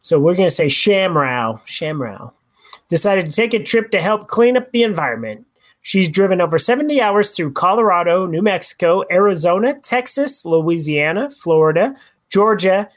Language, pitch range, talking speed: English, 160-220 Hz, 150 wpm